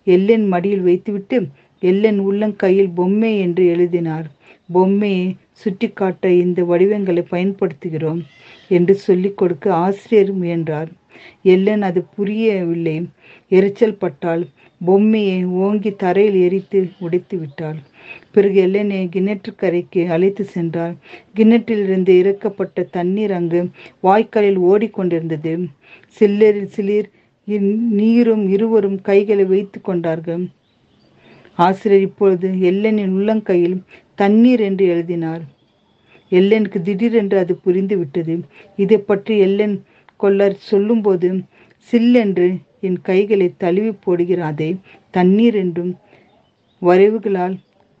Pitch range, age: 180-205 Hz, 50-69